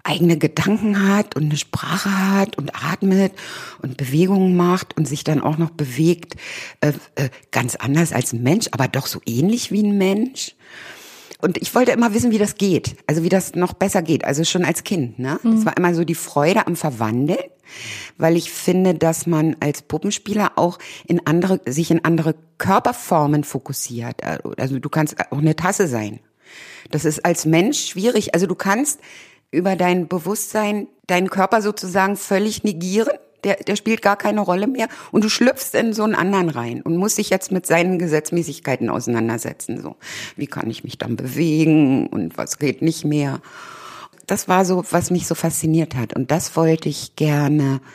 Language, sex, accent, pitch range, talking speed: German, female, German, 145-190 Hz, 180 wpm